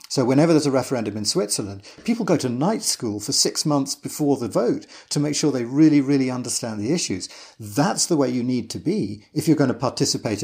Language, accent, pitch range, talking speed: English, British, 110-150 Hz, 225 wpm